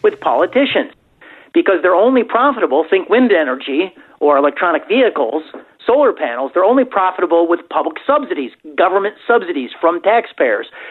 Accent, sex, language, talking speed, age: American, male, English, 130 wpm, 40-59